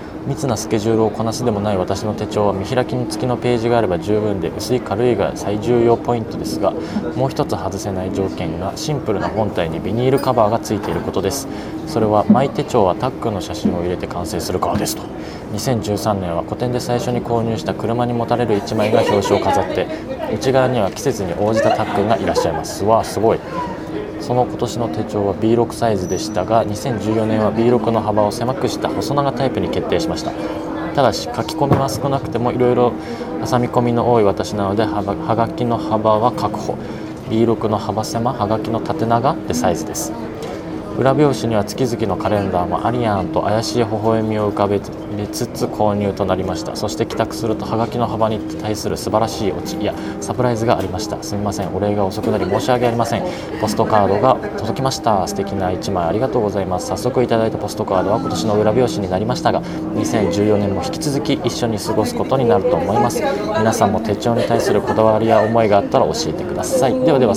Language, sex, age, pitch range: Japanese, male, 20-39, 105-120 Hz